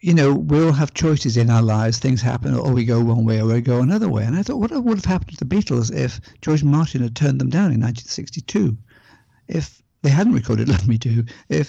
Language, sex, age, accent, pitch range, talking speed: English, male, 60-79, British, 115-160 Hz, 245 wpm